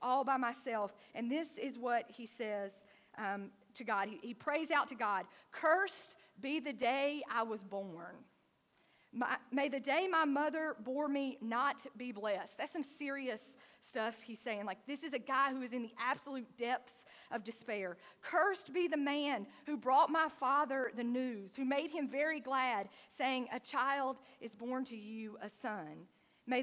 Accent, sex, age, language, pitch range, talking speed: American, female, 40-59, English, 230-290 Hz, 180 wpm